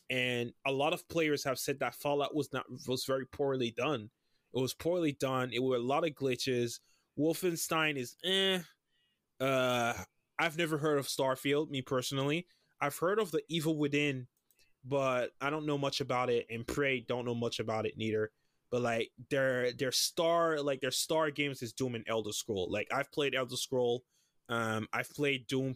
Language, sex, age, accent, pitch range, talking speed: English, male, 20-39, American, 120-145 Hz, 185 wpm